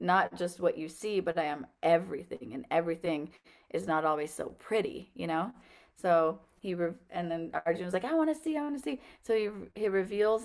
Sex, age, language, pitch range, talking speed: female, 30-49, English, 160-195 Hz, 210 wpm